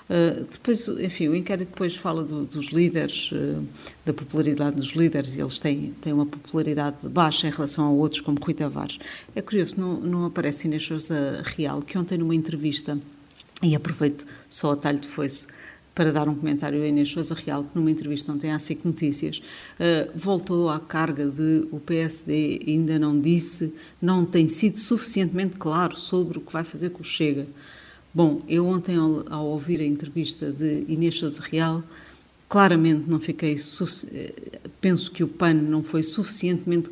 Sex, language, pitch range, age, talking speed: female, Portuguese, 150-170 Hz, 50-69, 175 wpm